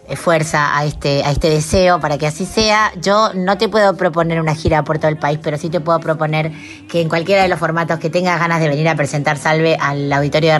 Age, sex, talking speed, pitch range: 20-39, female, 245 wpm, 145-170 Hz